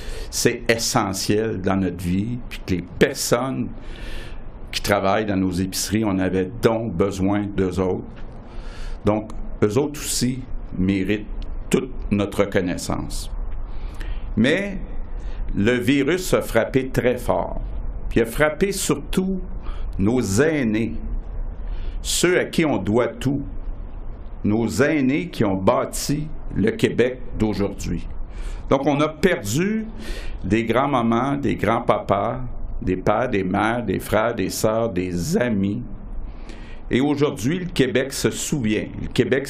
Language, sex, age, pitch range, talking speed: French, male, 60-79, 100-125 Hz, 120 wpm